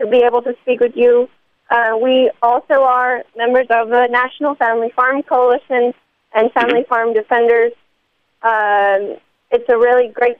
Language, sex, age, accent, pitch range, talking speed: English, female, 30-49, American, 220-255 Hz, 155 wpm